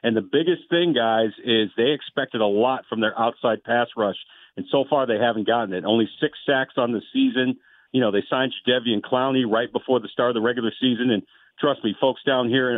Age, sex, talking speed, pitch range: 50-69, male, 230 wpm, 120-150 Hz